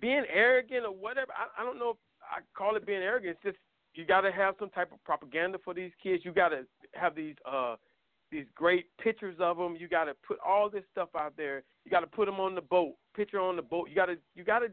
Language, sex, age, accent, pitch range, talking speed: English, male, 40-59, American, 180-250 Hz, 260 wpm